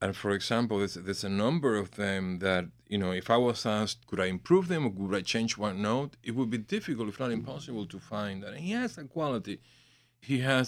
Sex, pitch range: male, 100-120 Hz